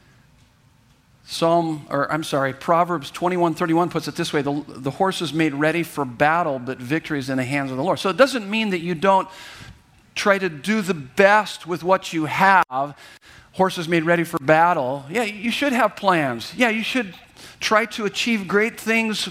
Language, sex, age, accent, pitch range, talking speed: English, male, 50-69, American, 145-190 Hz, 190 wpm